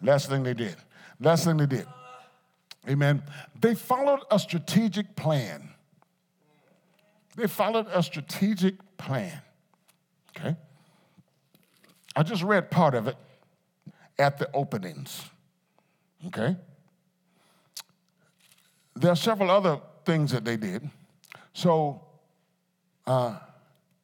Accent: American